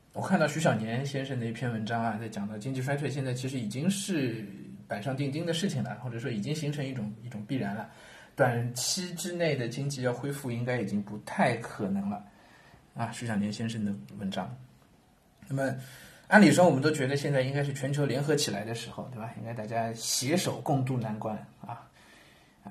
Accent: native